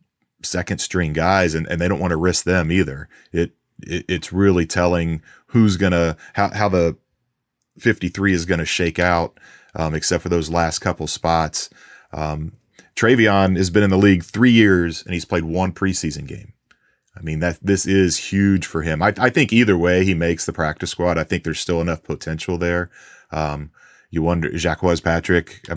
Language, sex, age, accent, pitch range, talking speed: English, male, 30-49, American, 85-95 Hz, 185 wpm